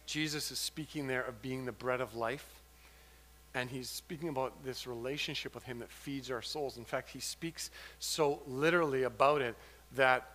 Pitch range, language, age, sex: 115-160 Hz, English, 40-59, male